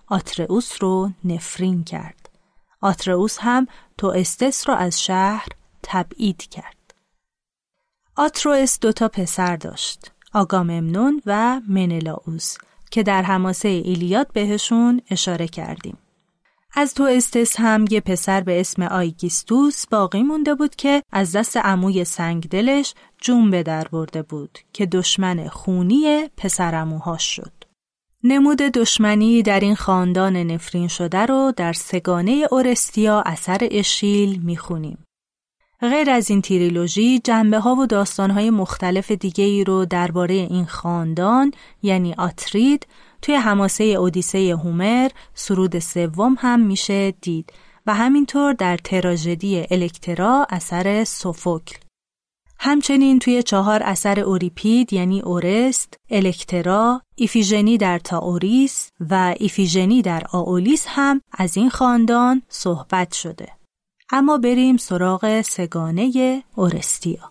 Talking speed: 115 wpm